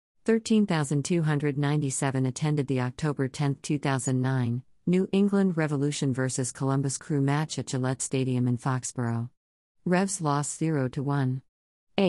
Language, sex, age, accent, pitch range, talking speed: English, female, 50-69, American, 130-155 Hz, 125 wpm